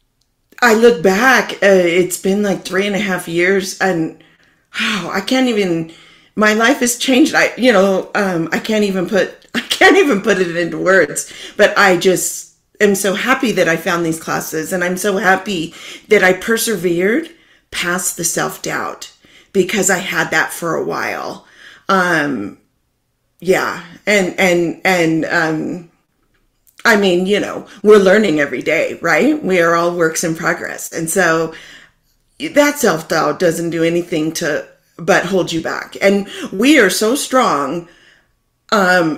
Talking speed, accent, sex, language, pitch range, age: 160 wpm, American, female, English, 170-210 Hz, 40-59